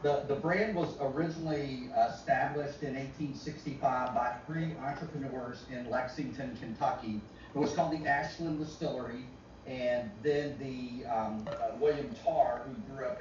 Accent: American